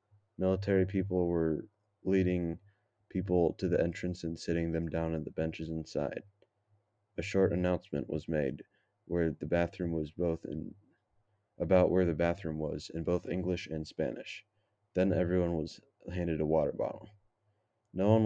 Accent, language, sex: American, English, male